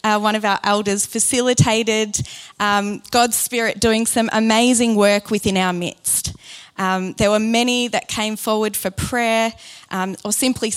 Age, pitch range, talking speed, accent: 20-39, 195-230 Hz, 155 wpm, Australian